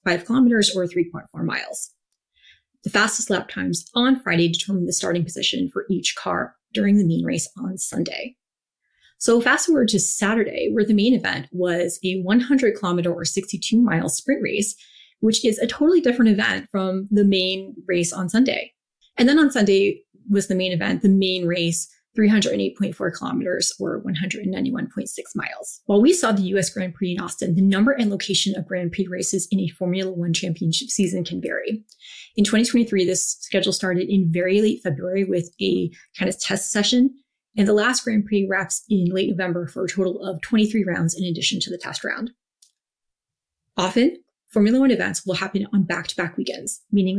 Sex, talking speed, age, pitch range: female, 180 wpm, 30-49, 185-225 Hz